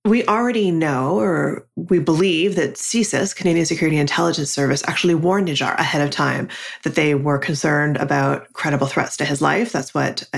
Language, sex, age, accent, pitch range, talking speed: English, female, 30-49, American, 145-185 Hz, 175 wpm